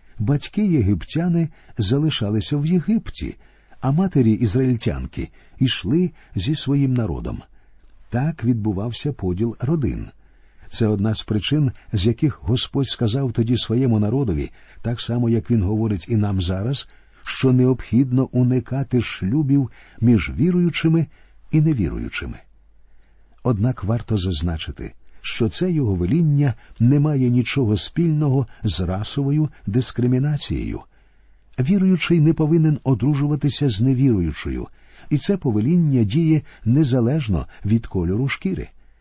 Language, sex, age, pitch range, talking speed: Ukrainian, male, 50-69, 110-145 Hz, 110 wpm